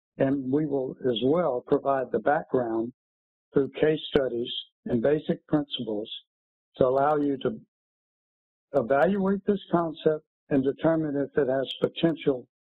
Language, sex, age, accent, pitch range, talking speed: English, male, 60-79, American, 130-160 Hz, 130 wpm